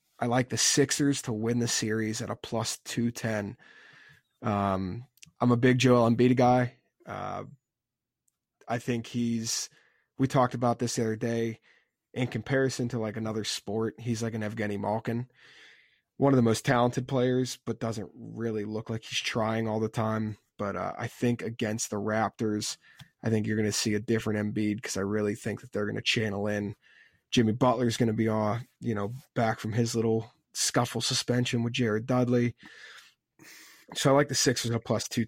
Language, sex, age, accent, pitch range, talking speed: English, male, 20-39, American, 110-125 Hz, 185 wpm